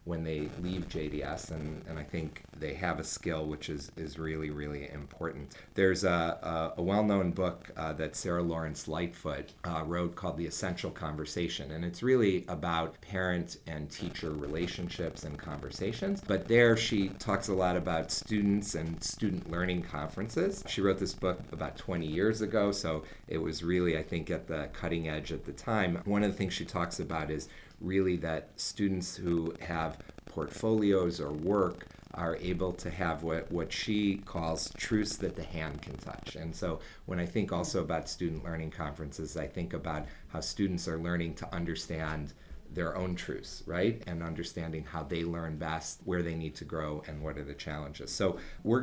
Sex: male